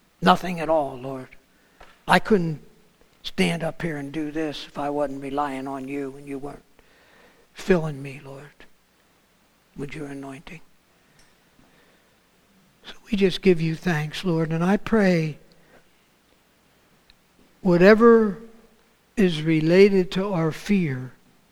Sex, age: male, 60-79